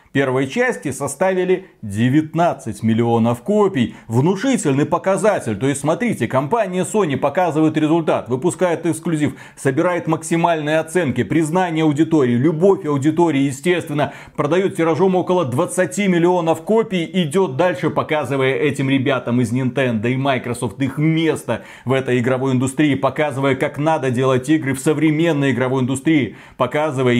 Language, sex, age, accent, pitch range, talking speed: Russian, male, 30-49, native, 135-180 Hz, 125 wpm